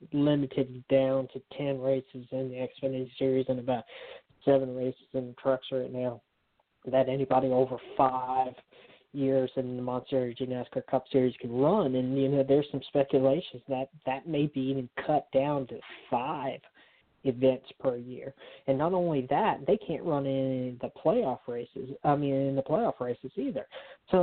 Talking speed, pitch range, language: 170 wpm, 130-145 Hz, English